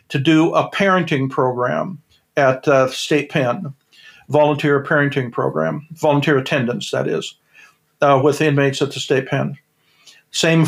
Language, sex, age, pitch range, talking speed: English, male, 50-69, 135-160 Hz, 135 wpm